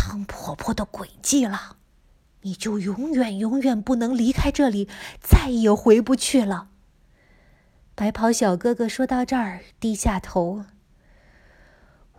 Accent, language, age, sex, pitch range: native, Chinese, 20-39, female, 200-275 Hz